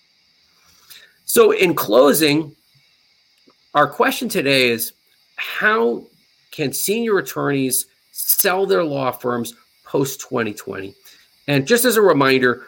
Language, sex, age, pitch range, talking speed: English, male, 40-59, 130-165 Hz, 105 wpm